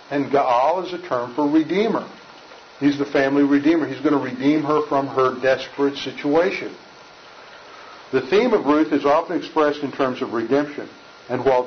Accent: American